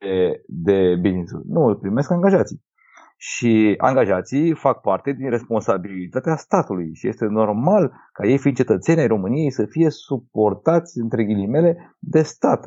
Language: Romanian